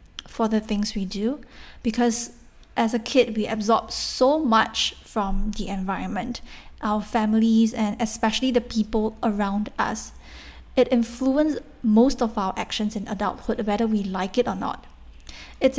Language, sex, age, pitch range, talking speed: English, female, 10-29, 215-255 Hz, 150 wpm